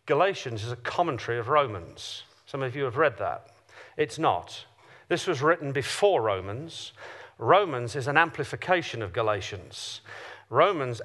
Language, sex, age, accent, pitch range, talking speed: English, male, 40-59, British, 130-180 Hz, 140 wpm